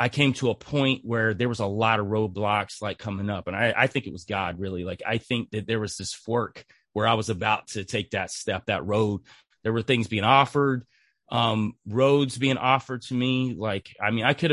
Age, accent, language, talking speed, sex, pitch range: 30-49, American, English, 235 wpm, male, 105-125 Hz